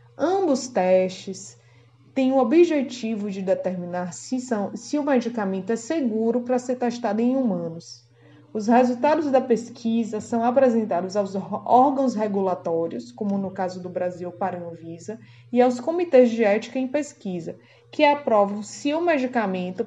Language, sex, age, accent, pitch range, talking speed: Portuguese, female, 20-39, Brazilian, 180-250 Hz, 140 wpm